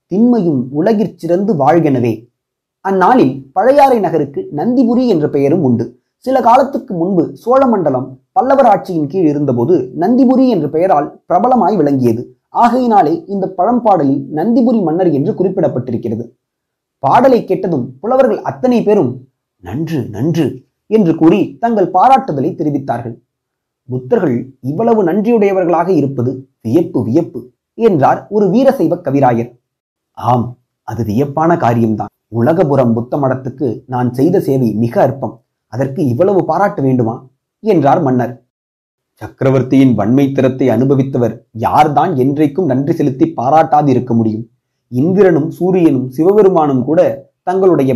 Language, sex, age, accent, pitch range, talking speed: Tamil, male, 30-49, native, 125-195 Hz, 105 wpm